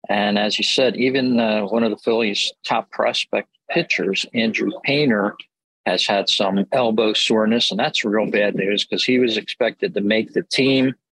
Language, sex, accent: English, male, American